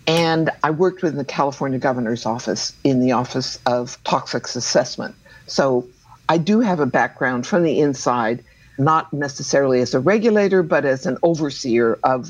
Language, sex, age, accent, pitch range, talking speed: English, female, 60-79, American, 130-175 Hz, 160 wpm